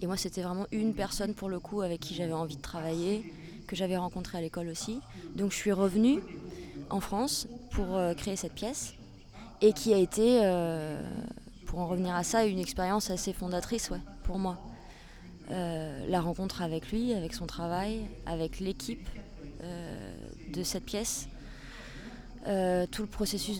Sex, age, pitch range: female, 20-39, 180-215 Hz